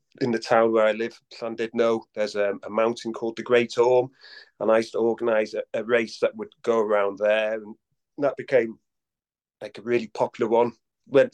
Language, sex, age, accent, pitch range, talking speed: English, male, 30-49, British, 100-125 Hz, 205 wpm